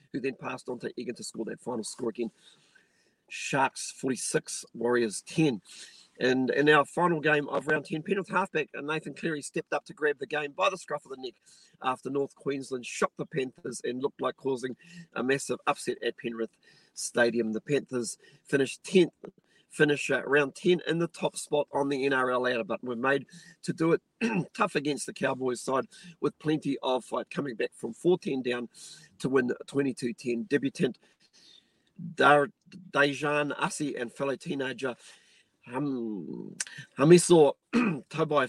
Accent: Australian